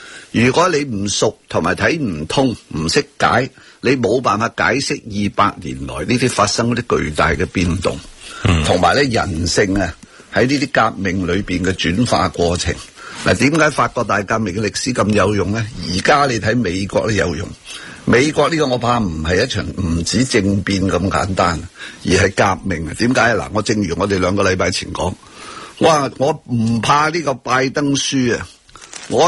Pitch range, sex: 100-130 Hz, male